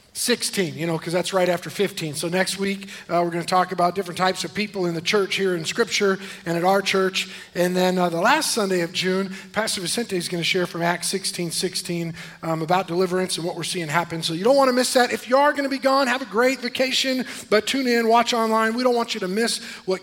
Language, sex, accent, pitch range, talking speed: English, male, American, 180-265 Hz, 260 wpm